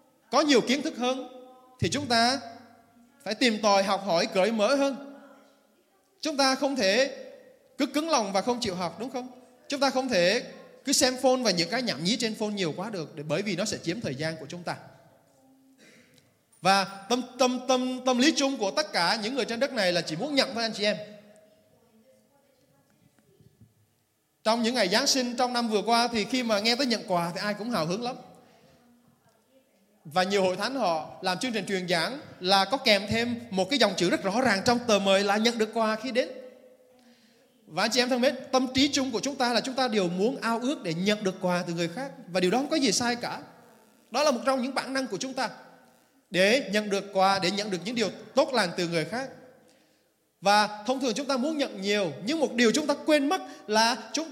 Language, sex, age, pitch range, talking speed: Vietnamese, male, 20-39, 200-265 Hz, 230 wpm